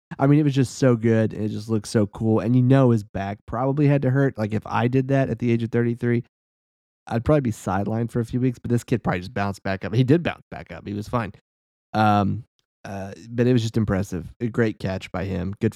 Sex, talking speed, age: male, 265 wpm, 30-49